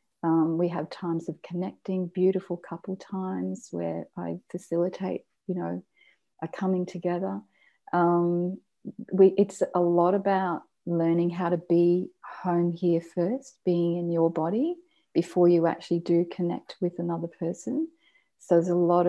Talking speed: 140 wpm